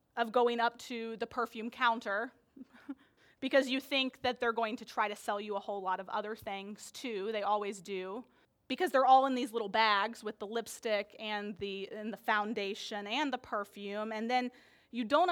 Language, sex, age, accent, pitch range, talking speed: English, female, 30-49, American, 215-280 Hz, 190 wpm